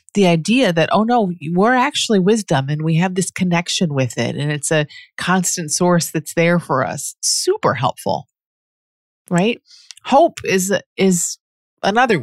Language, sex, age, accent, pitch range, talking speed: English, female, 30-49, American, 160-200 Hz, 155 wpm